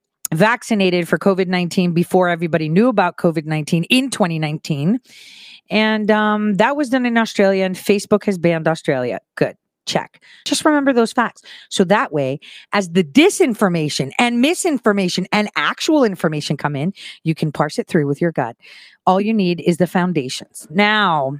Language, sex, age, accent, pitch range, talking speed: English, female, 40-59, American, 170-230 Hz, 155 wpm